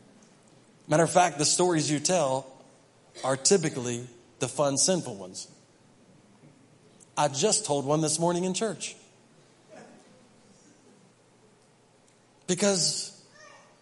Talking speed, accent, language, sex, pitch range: 95 wpm, American, English, male, 155-220 Hz